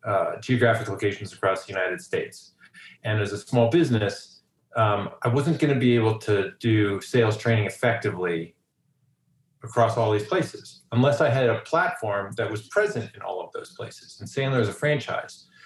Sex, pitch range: male, 110-135 Hz